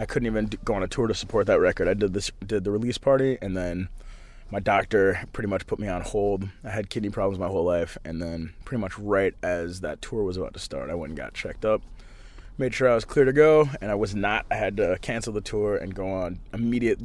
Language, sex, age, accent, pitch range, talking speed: English, male, 20-39, American, 100-130 Hz, 260 wpm